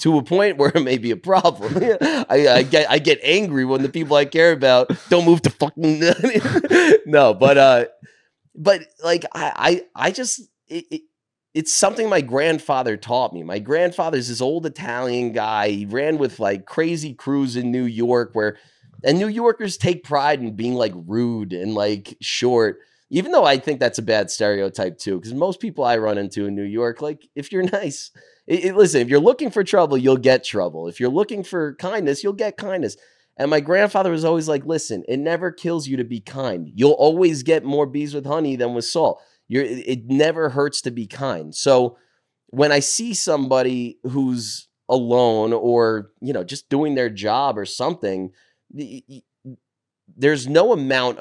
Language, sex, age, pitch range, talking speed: English, male, 30-49, 120-165 Hz, 185 wpm